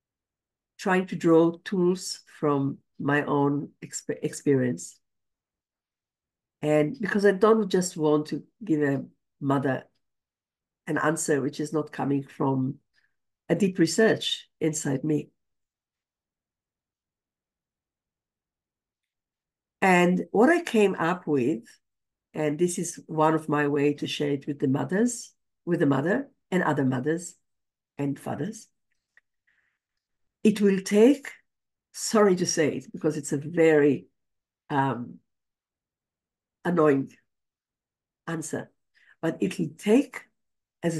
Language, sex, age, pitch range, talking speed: English, female, 50-69, 145-185 Hz, 110 wpm